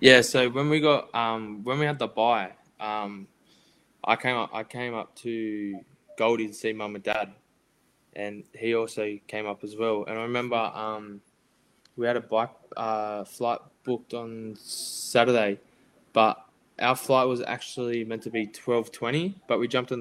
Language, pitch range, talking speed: English, 105-120 Hz, 175 wpm